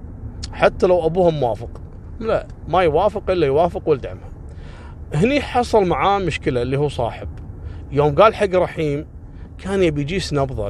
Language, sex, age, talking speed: Arabic, male, 30-49, 140 wpm